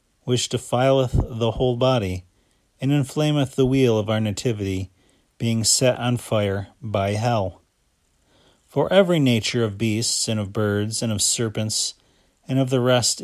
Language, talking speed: English, 150 wpm